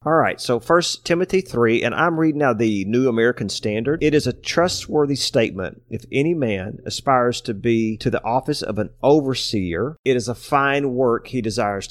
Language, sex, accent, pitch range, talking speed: English, male, American, 105-125 Hz, 190 wpm